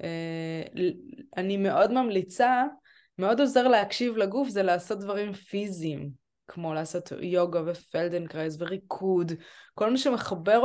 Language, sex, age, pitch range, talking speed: Hebrew, female, 20-39, 175-230 Hz, 105 wpm